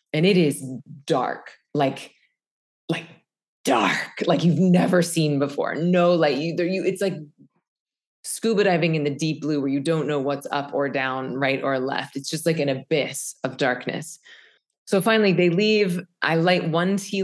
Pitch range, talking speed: 145-185 Hz, 180 wpm